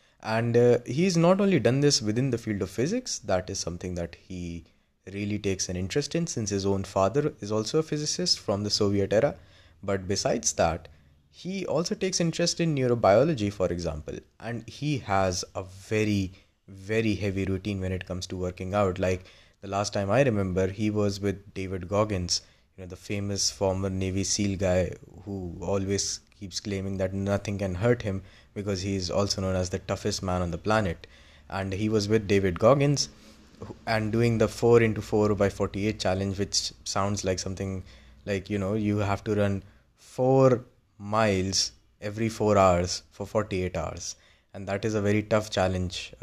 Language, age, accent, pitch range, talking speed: English, 20-39, Indian, 95-110 Hz, 180 wpm